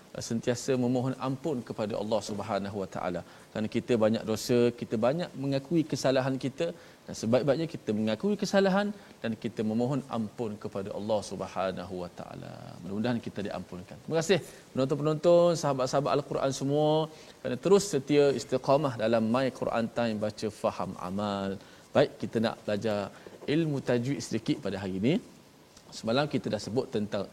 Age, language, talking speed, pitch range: 20-39, Malayalam, 145 wpm, 105-135 Hz